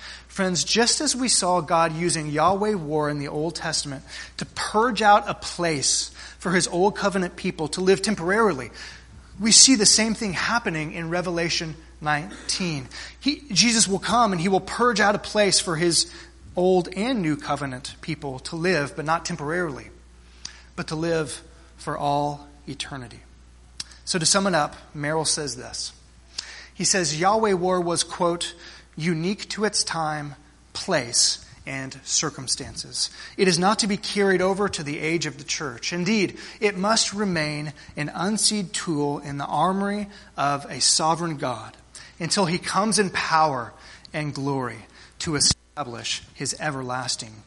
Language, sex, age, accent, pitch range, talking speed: English, male, 30-49, American, 145-190 Hz, 155 wpm